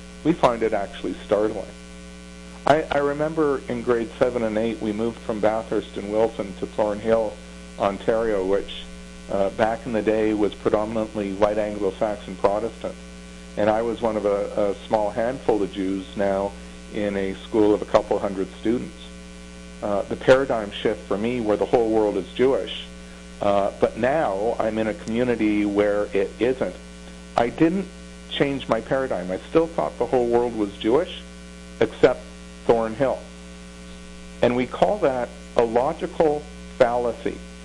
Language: English